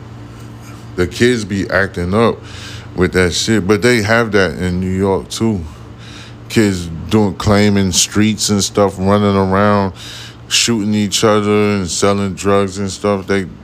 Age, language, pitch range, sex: 20-39, English, 85-105 Hz, male